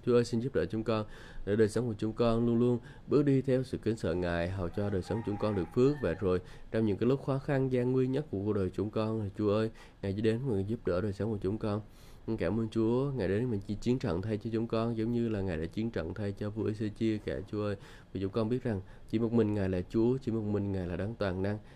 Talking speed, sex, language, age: 290 wpm, male, Vietnamese, 20-39